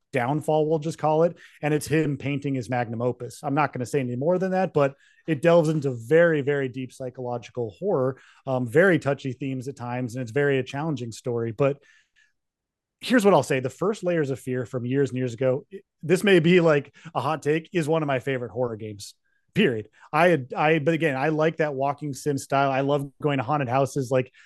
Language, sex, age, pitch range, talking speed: English, male, 30-49, 130-160 Hz, 220 wpm